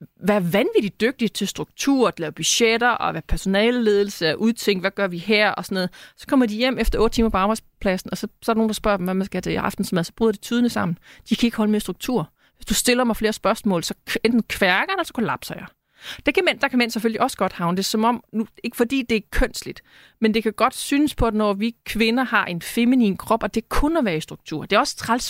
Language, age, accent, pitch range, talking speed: Danish, 30-49, native, 200-245 Hz, 275 wpm